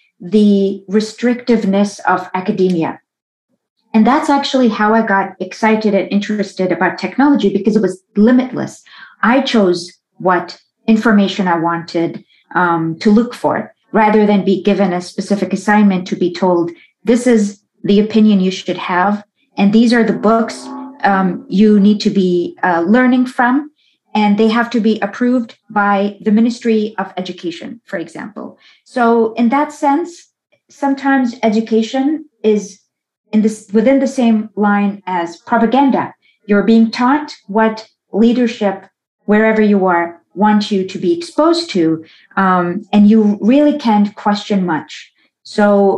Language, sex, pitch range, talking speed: English, female, 195-230 Hz, 140 wpm